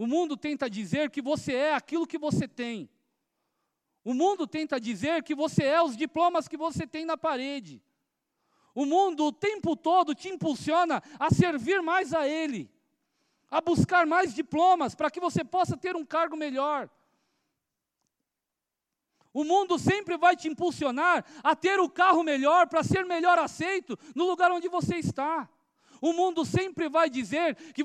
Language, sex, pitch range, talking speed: Portuguese, male, 255-335 Hz, 160 wpm